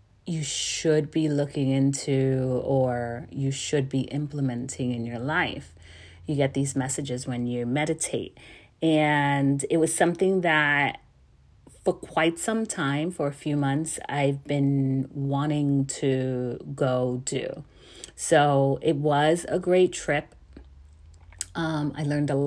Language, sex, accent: English, female, American